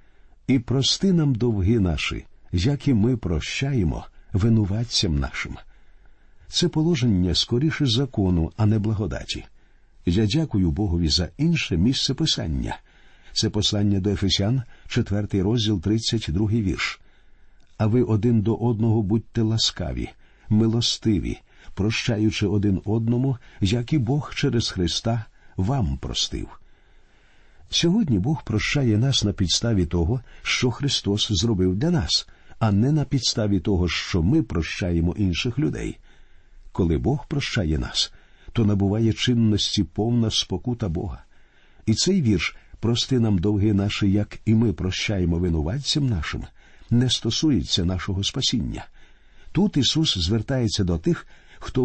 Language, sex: Ukrainian, male